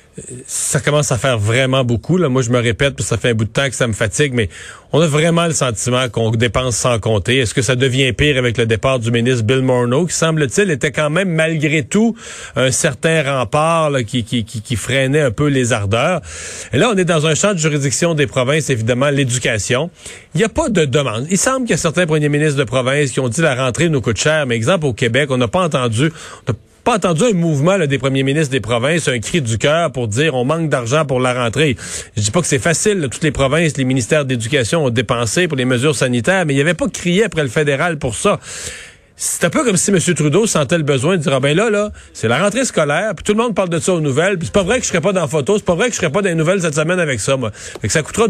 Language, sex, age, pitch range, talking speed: French, male, 40-59, 130-175 Hz, 275 wpm